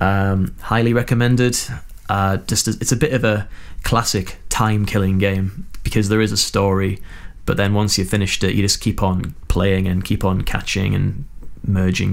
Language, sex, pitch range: English, male, 95-110 Hz